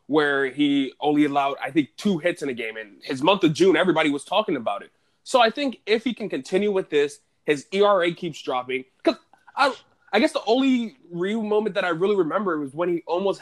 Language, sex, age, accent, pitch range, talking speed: English, male, 20-39, American, 130-190 Hz, 225 wpm